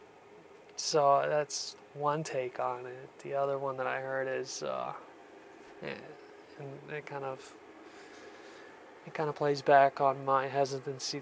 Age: 20-39